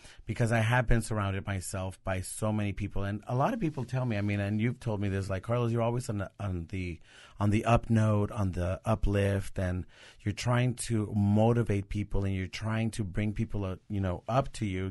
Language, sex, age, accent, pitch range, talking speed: English, male, 30-49, American, 100-120 Hz, 230 wpm